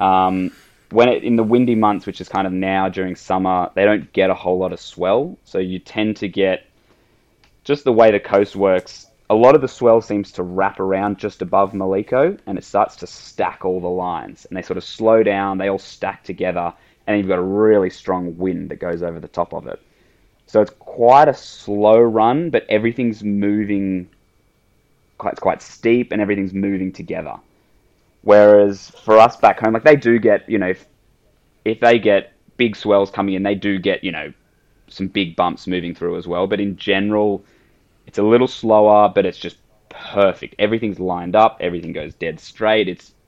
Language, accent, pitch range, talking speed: English, Australian, 95-105 Hz, 200 wpm